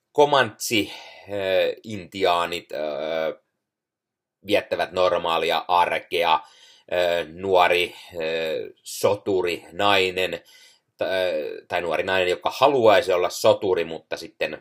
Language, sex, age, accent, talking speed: Finnish, male, 30-49, native, 65 wpm